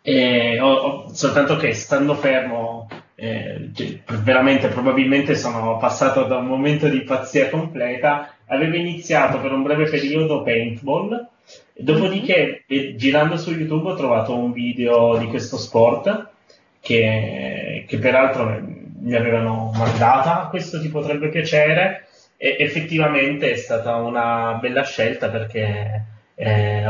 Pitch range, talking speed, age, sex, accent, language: 115-145 Hz, 120 wpm, 20-39, male, native, Italian